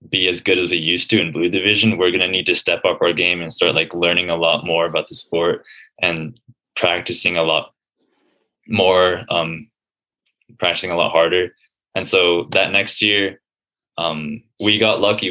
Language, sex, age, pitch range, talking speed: English, male, 20-39, 85-95 Hz, 190 wpm